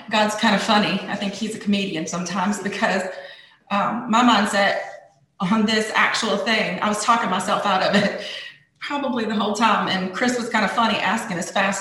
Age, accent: 30-49, American